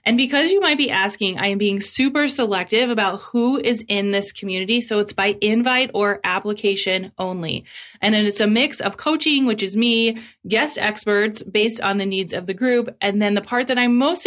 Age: 30-49